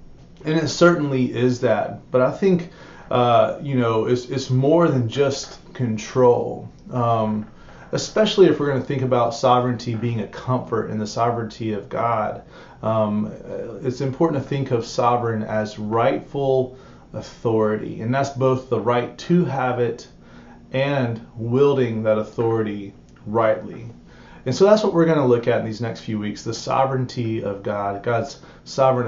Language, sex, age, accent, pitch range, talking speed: English, male, 30-49, American, 115-140 Hz, 160 wpm